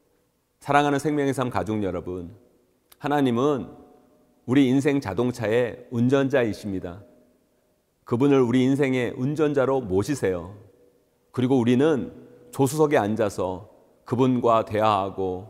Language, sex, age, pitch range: Korean, male, 40-59, 105-145 Hz